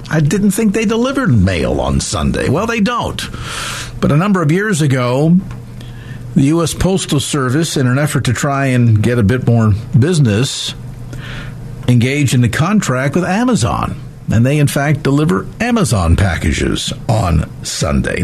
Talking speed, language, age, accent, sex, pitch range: 155 wpm, English, 50-69, American, male, 120-180 Hz